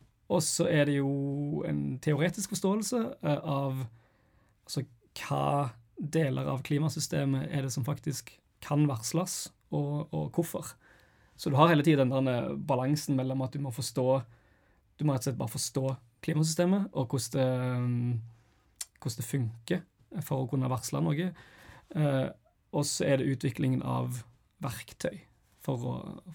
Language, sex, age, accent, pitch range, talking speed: English, male, 20-39, Swedish, 120-150 Hz, 135 wpm